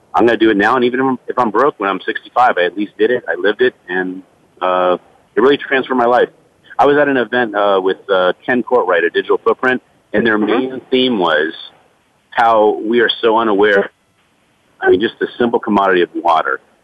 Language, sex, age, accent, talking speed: English, male, 50-69, American, 210 wpm